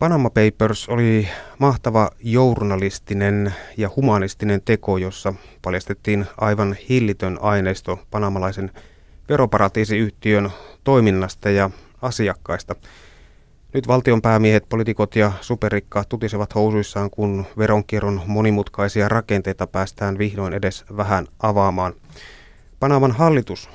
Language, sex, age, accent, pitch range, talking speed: Finnish, male, 30-49, native, 95-110 Hz, 90 wpm